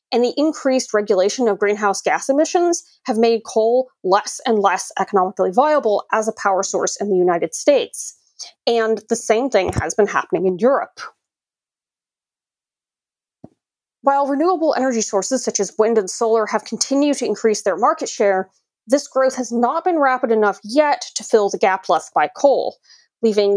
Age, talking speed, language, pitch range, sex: 30-49, 165 wpm, English, 205-265 Hz, female